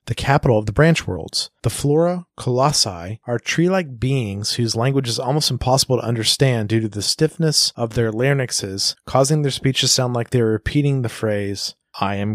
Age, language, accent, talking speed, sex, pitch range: 30-49, English, American, 190 wpm, male, 110-140 Hz